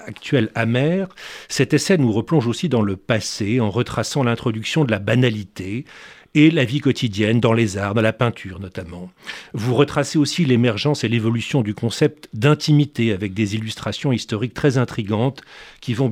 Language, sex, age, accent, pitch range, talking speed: French, male, 40-59, French, 110-145 Hz, 165 wpm